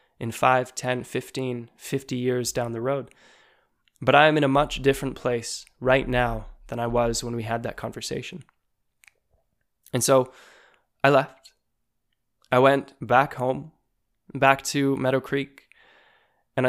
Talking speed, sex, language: 145 wpm, male, English